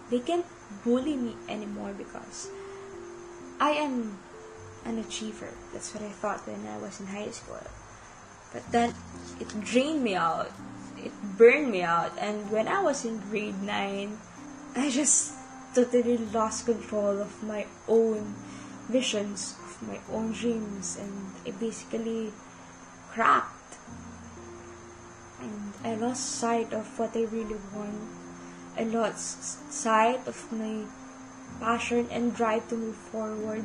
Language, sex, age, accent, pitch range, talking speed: Filipino, female, 10-29, native, 195-240 Hz, 135 wpm